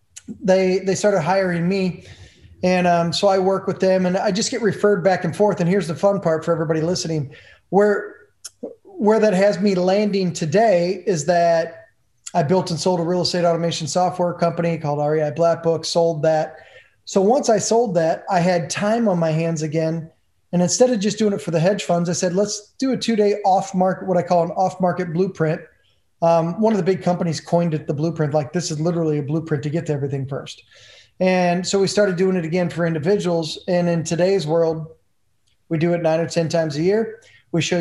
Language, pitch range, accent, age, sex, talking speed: English, 160-195 Hz, American, 20-39, male, 210 wpm